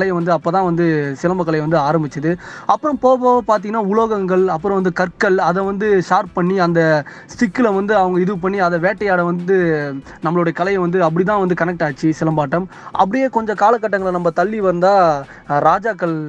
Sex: male